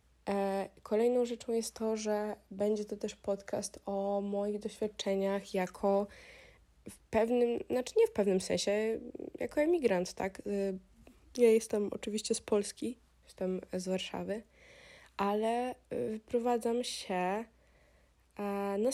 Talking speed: 110 wpm